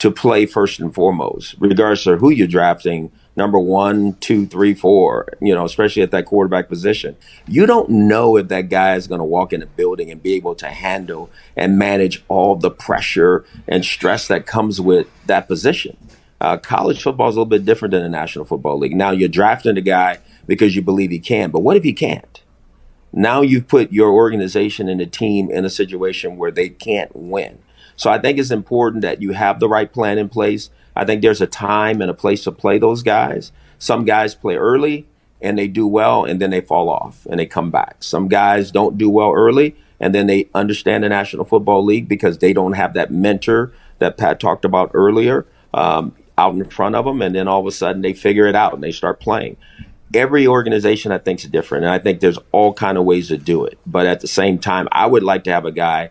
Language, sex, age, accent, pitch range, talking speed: English, male, 40-59, American, 95-110 Hz, 225 wpm